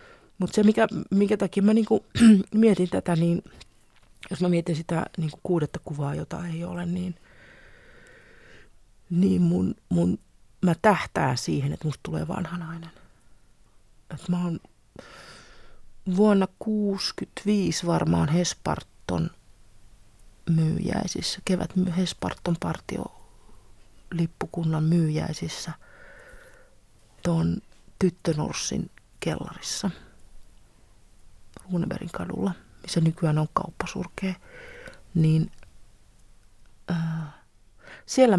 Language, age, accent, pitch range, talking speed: Finnish, 30-49, native, 155-200 Hz, 80 wpm